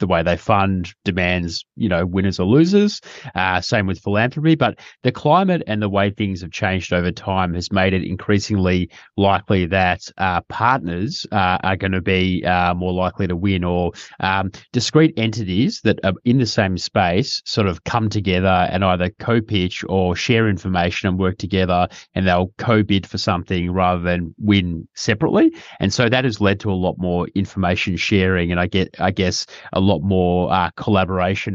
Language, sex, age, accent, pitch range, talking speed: English, male, 30-49, Australian, 90-105 Hz, 180 wpm